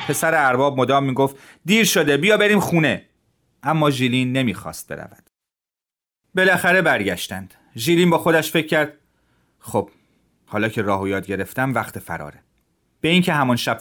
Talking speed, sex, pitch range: 145 wpm, male, 105-150 Hz